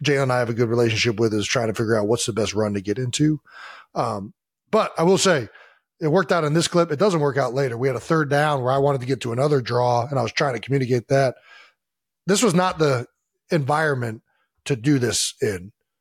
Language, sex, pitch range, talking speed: English, male, 120-150 Hz, 245 wpm